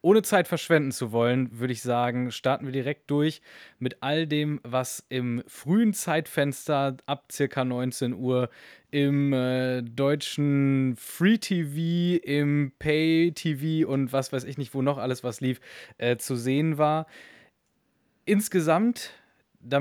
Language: German